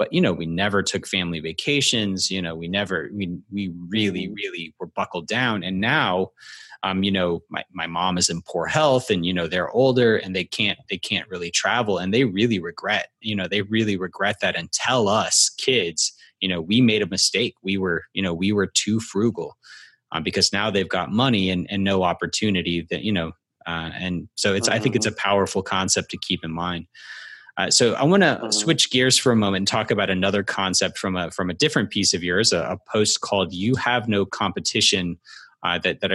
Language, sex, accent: English, male, American